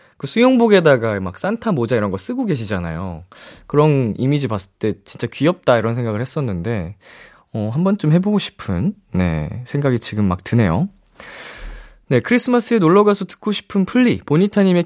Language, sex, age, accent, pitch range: Korean, male, 20-39, native, 115-190 Hz